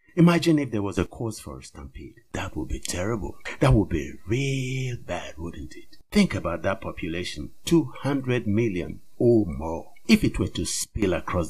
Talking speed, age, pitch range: 185 wpm, 60-79, 95-135 Hz